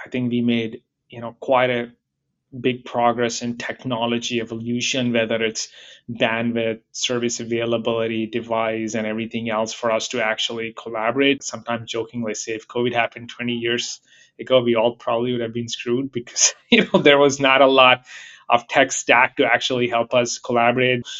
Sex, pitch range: male, 115-130 Hz